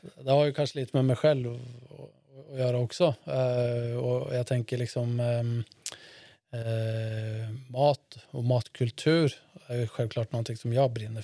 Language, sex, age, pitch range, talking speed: Swedish, male, 20-39, 115-135 Hz, 135 wpm